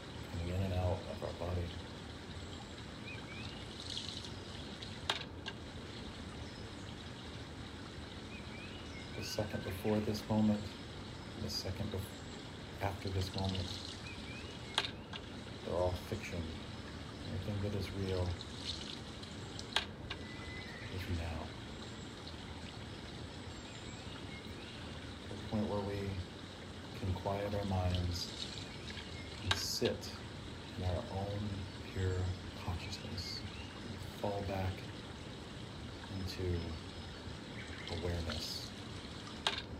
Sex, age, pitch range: male, 40-59, 90-105 Hz